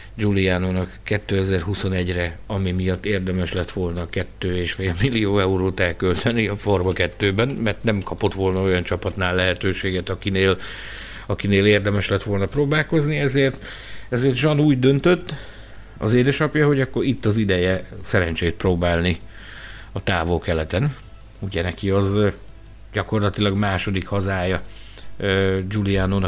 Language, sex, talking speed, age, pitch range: Hungarian, male, 120 wpm, 60-79, 95-110 Hz